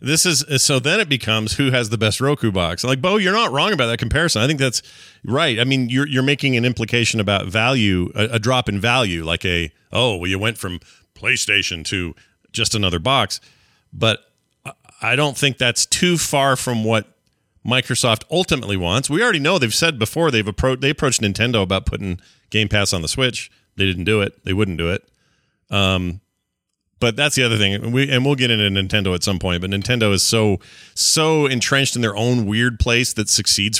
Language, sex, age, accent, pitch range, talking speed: English, male, 40-59, American, 100-135 Hz, 210 wpm